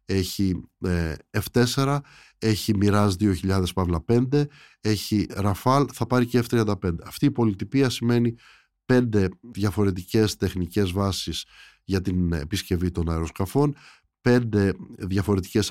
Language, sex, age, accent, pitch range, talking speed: Greek, male, 20-39, native, 95-125 Hz, 105 wpm